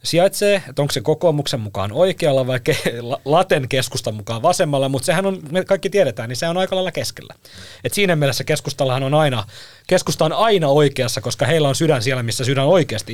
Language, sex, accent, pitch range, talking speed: Finnish, male, native, 125-175 Hz, 185 wpm